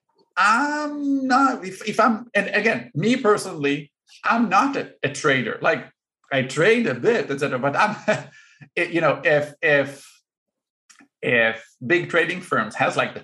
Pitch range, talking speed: 130-190 Hz, 150 wpm